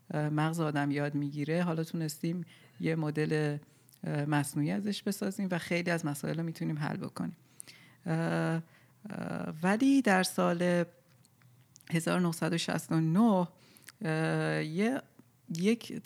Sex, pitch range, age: female, 145-185 Hz, 40-59